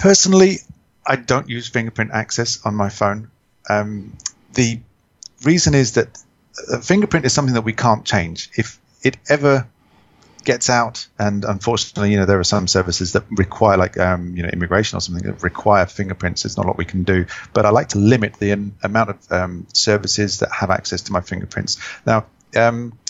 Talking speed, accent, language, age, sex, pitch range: 185 wpm, British, English, 40-59, male, 95-120 Hz